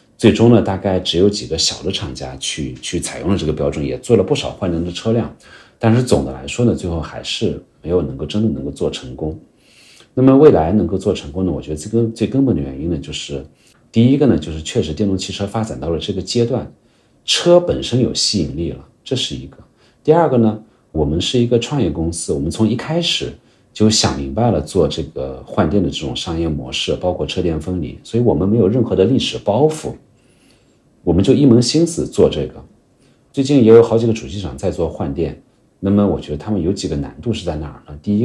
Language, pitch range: Chinese, 80-115 Hz